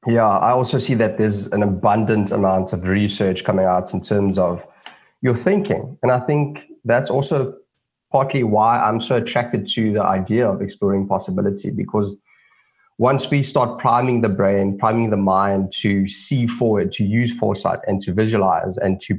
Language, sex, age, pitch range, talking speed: English, male, 20-39, 100-120 Hz, 170 wpm